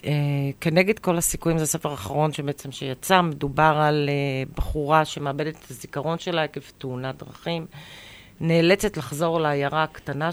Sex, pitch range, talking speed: female, 140-170 Hz, 140 wpm